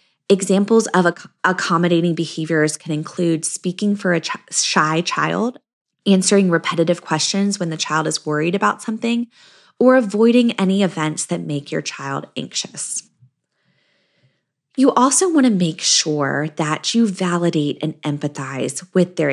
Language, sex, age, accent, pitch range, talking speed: English, female, 20-39, American, 165-225 Hz, 135 wpm